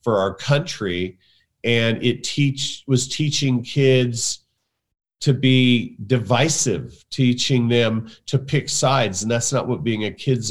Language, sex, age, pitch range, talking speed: Spanish, male, 40-59, 115-150 Hz, 135 wpm